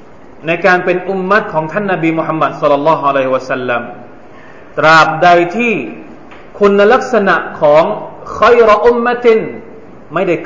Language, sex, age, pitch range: Thai, male, 30-49, 145-200 Hz